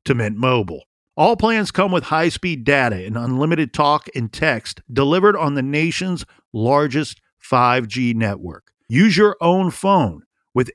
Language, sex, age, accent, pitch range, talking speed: English, male, 50-69, American, 135-175 Hz, 145 wpm